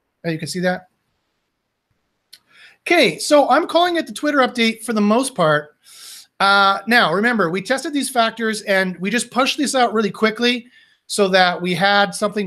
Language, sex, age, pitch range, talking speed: English, male, 30-49, 185-240 Hz, 175 wpm